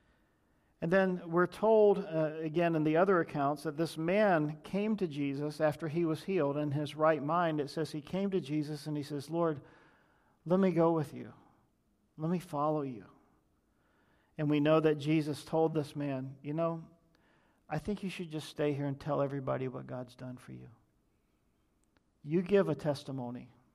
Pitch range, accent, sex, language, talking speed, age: 145-170 Hz, American, male, English, 180 wpm, 50-69